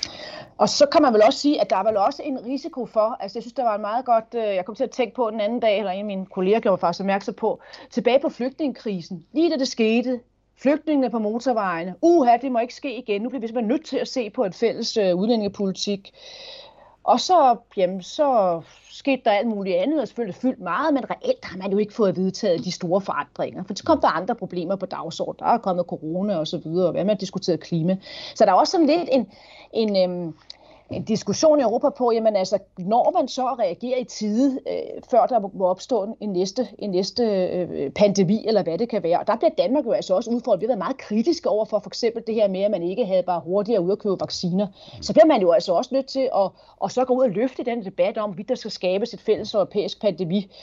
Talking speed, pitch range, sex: 245 wpm, 195-260 Hz, female